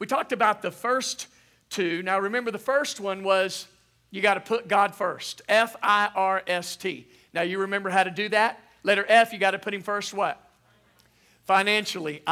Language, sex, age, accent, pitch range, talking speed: English, male, 50-69, American, 175-220 Hz, 195 wpm